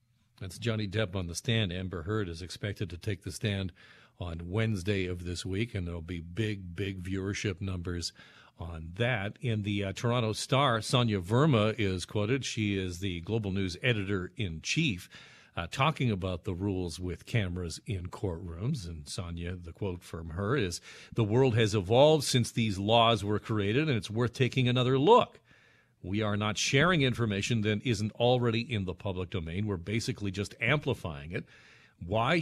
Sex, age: male, 50-69